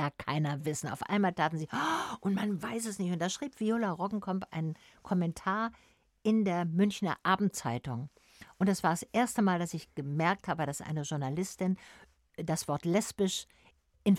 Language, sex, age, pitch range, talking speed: German, female, 60-79, 150-190 Hz, 165 wpm